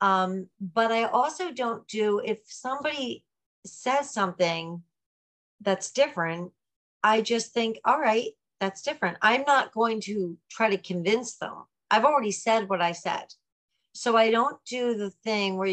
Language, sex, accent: English, female, American